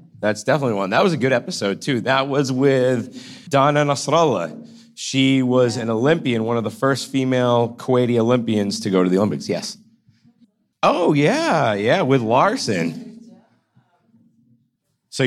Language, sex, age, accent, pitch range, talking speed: English, male, 30-49, American, 110-155 Hz, 145 wpm